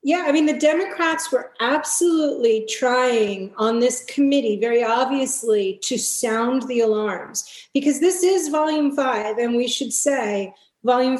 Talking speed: 145 wpm